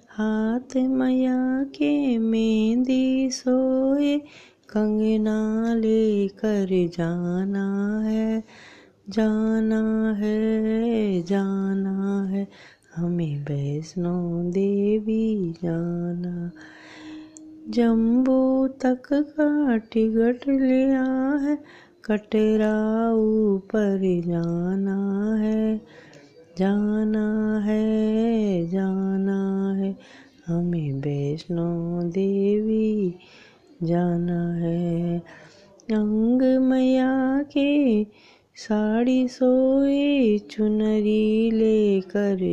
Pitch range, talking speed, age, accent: 185-235 Hz, 60 wpm, 20-39, native